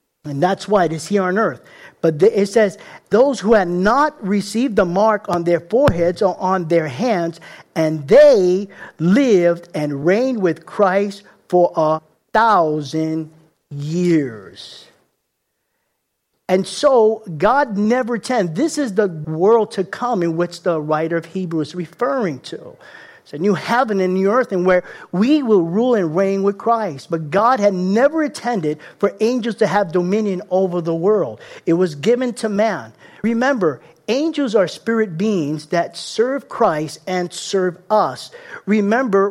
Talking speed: 155 wpm